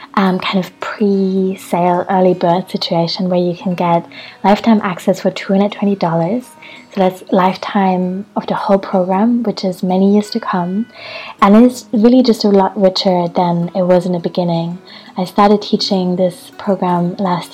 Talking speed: 160 wpm